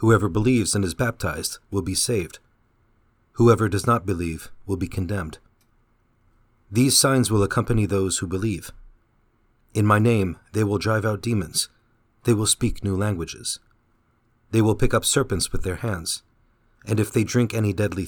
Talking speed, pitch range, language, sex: 165 wpm, 95-115 Hz, English, male